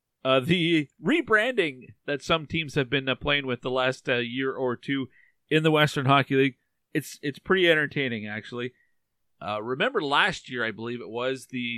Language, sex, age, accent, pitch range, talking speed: English, male, 40-59, American, 130-155 Hz, 180 wpm